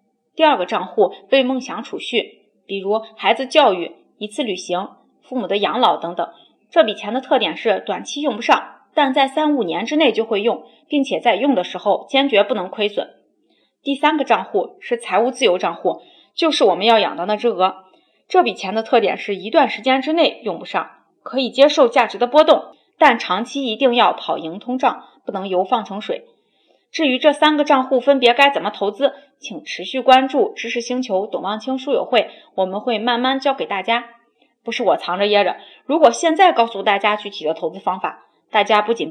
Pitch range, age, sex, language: 205-280 Hz, 30-49, female, Chinese